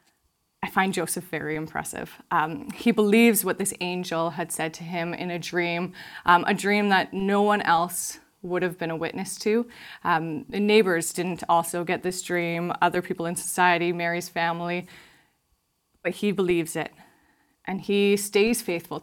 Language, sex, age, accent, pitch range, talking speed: English, female, 20-39, American, 170-210 Hz, 165 wpm